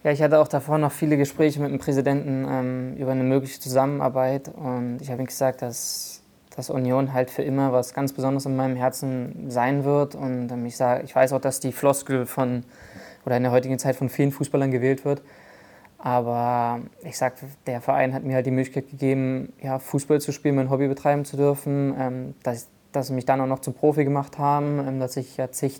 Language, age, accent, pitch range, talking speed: German, 20-39, German, 125-140 Hz, 220 wpm